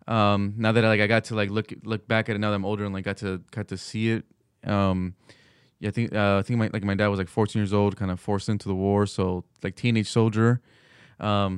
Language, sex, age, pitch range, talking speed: English, male, 20-39, 100-115 Hz, 270 wpm